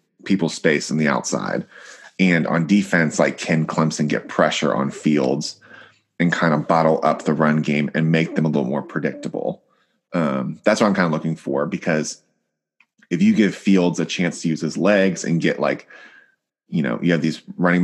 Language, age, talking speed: English, 30-49, 195 wpm